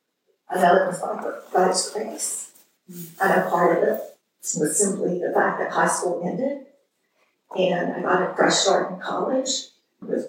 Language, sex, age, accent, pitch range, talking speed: English, female, 40-59, American, 185-225 Hz, 170 wpm